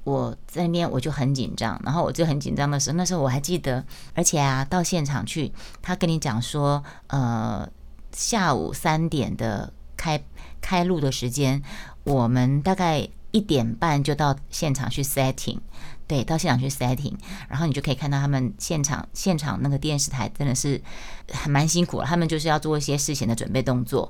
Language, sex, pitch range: Chinese, female, 135-170 Hz